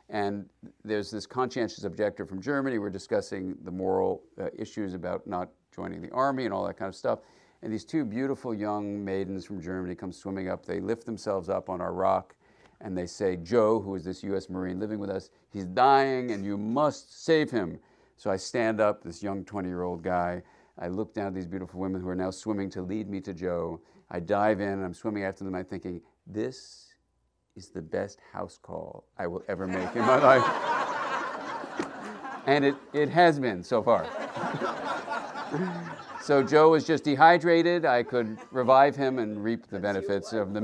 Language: English